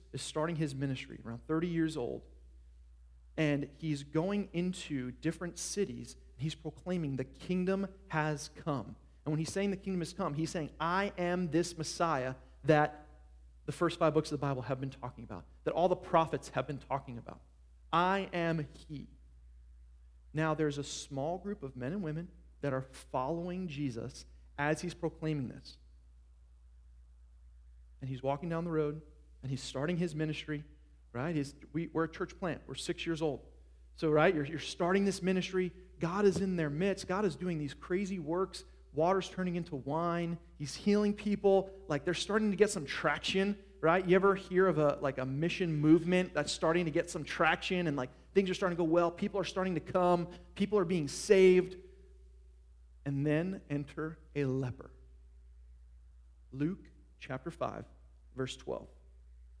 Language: English